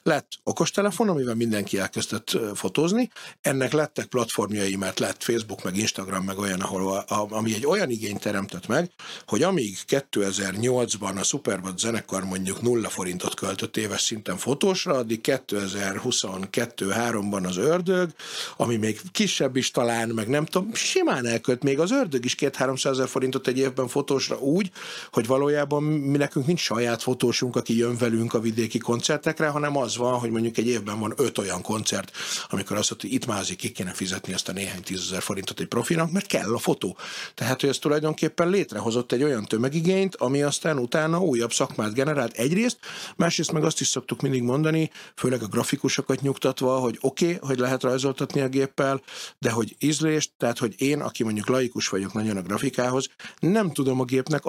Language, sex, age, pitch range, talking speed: Hungarian, male, 50-69, 115-145 Hz, 170 wpm